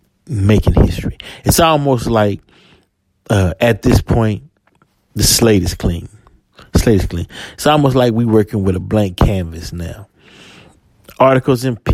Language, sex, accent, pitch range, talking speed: English, male, American, 95-120 Hz, 135 wpm